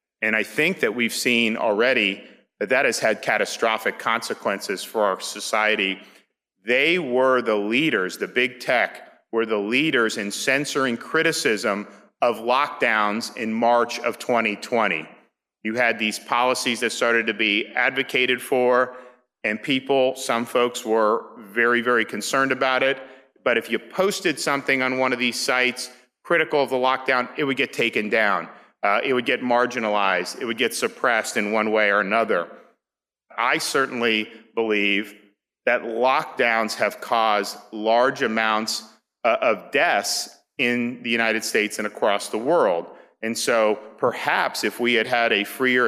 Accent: American